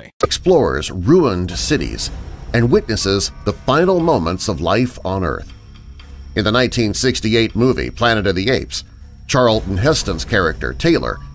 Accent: American